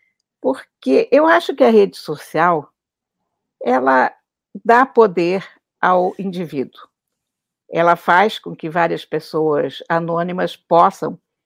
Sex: female